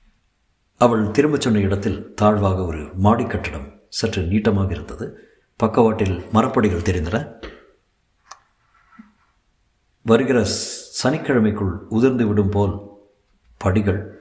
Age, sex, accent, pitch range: 50-69, male, native, 100-125 Hz